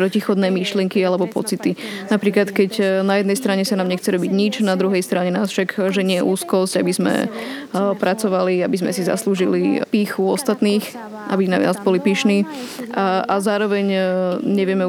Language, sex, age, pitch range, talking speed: Slovak, female, 20-39, 185-215 Hz, 155 wpm